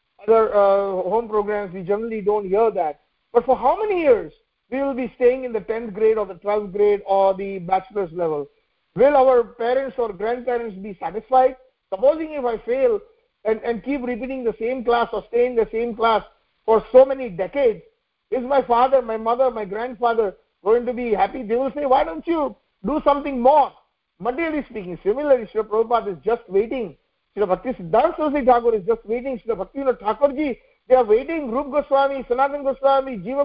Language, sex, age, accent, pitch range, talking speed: English, male, 50-69, Indian, 215-270 Hz, 190 wpm